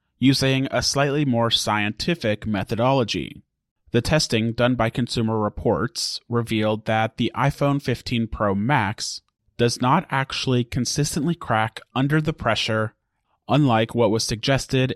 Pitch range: 110-130 Hz